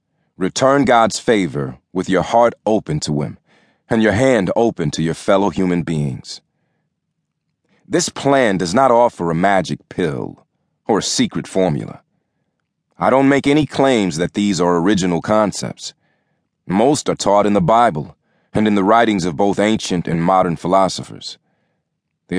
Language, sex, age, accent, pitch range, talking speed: English, male, 40-59, American, 90-125 Hz, 155 wpm